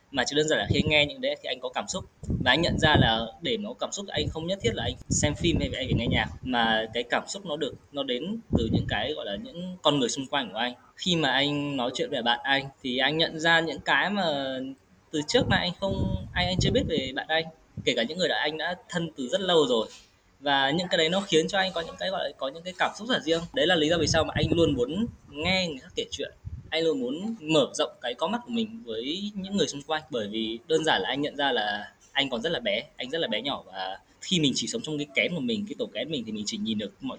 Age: 20-39